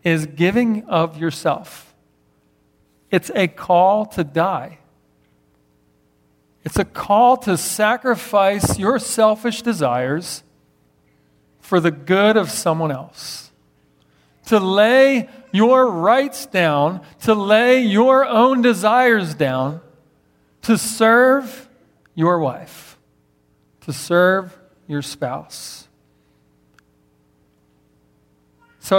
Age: 40-59